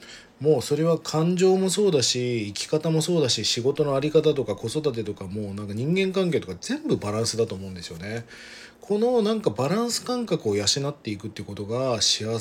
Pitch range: 105-160 Hz